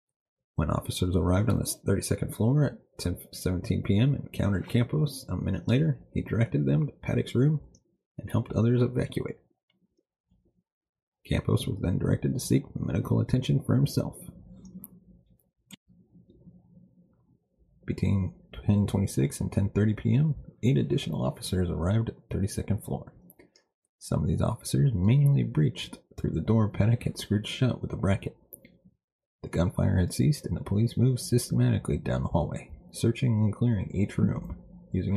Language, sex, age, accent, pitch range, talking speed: English, male, 30-49, American, 95-130 Hz, 140 wpm